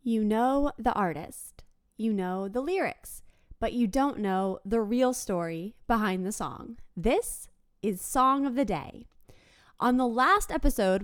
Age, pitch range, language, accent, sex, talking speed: 20-39, 200-255 Hz, English, American, female, 150 wpm